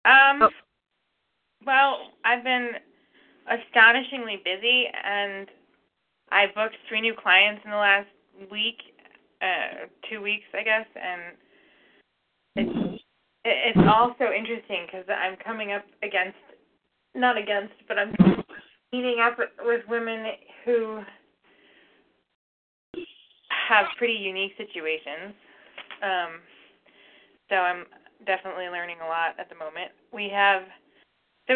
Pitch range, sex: 185-230 Hz, female